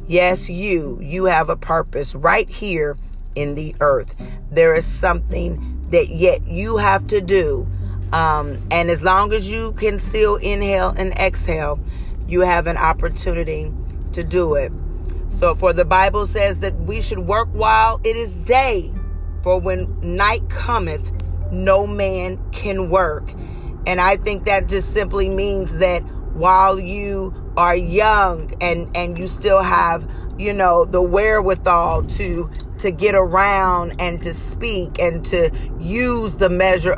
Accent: American